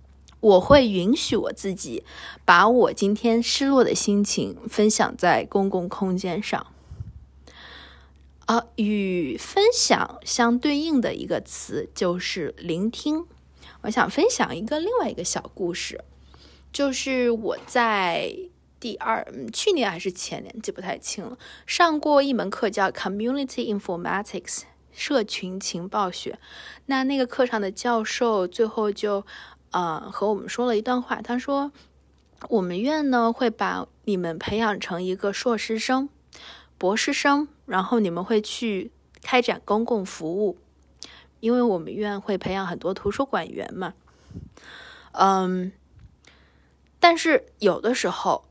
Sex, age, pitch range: female, 20-39, 190-250 Hz